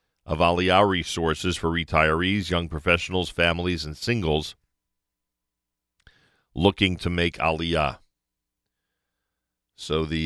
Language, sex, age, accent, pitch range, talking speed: English, male, 40-59, American, 80-95 Hz, 95 wpm